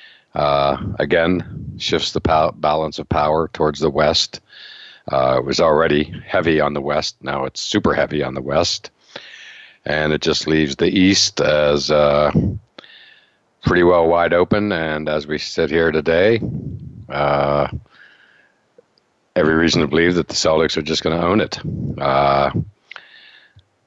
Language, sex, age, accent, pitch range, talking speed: English, male, 50-69, American, 75-80 Hz, 145 wpm